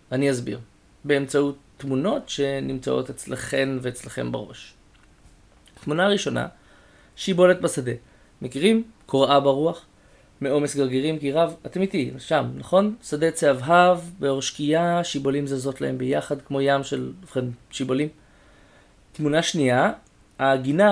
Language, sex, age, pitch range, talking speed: Hebrew, male, 30-49, 135-165 Hz, 110 wpm